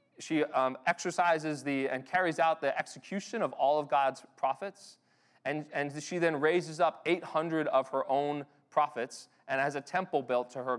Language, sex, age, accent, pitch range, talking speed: English, male, 30-49, American, 130-165 Hz, 180 wpm